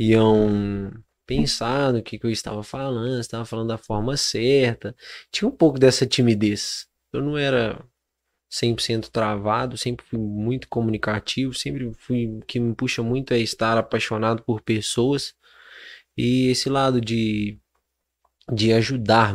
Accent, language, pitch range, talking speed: Brazilian, Portuguese, 115-135 Hz, 145 wpm